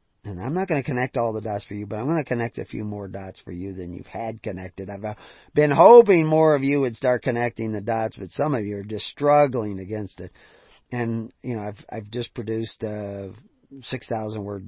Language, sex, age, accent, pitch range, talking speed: English, male, 40-59, American, 100-120 Hz, 225 wpm